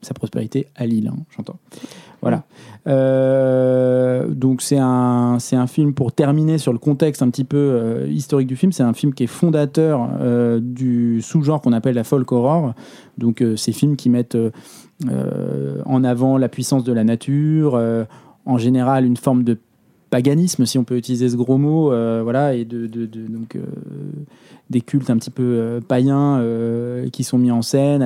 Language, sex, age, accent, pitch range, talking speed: French, male, 20-39, French, 120-140 Hz, 190 wpm